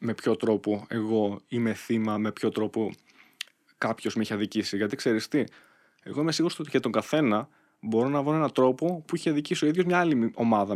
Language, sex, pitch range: Greek, male, 110-160 Hz